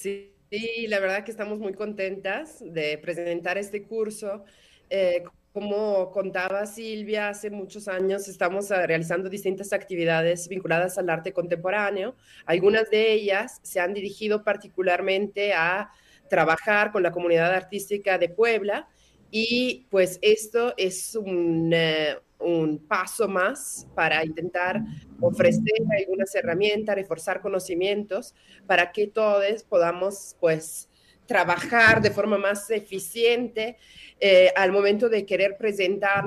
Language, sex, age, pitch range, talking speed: Spanish, female, 30-49, 180-210 Hz, 120 wpm